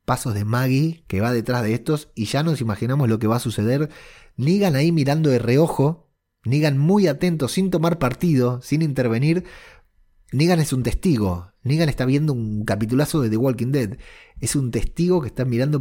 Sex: male